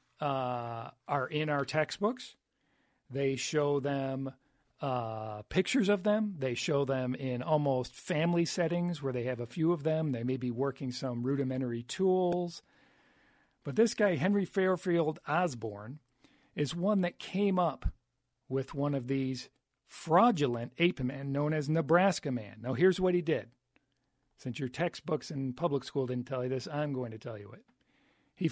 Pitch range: 130-175 Hz